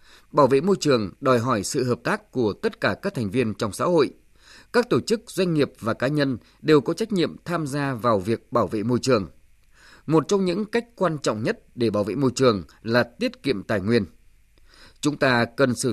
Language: Vietnamese